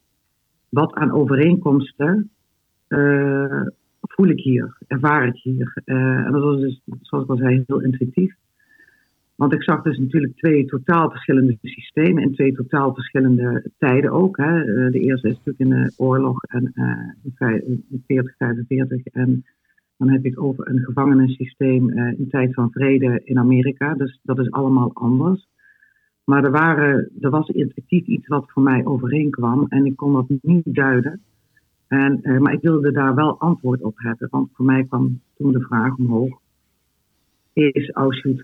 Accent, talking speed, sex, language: Dutch, 160 wpm, female, Dutch